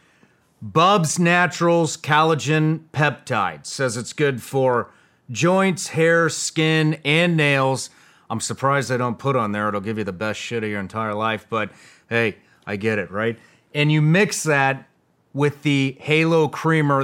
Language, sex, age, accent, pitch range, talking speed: English, male, 30-49, American, 120-155 Hz, 155 wpm